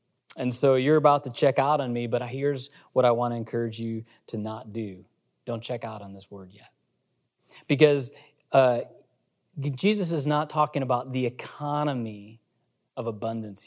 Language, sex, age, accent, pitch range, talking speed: English, male, 30-49, American, 115-145 Hz, 165 wpm